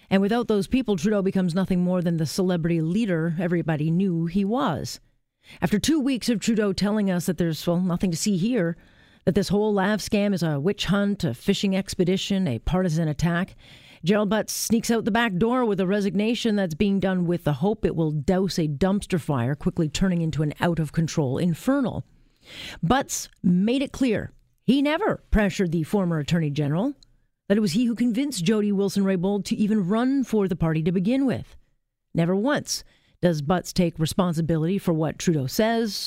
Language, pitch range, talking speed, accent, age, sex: English, 170-215 Hz, 190 wpm, American, 40-59, female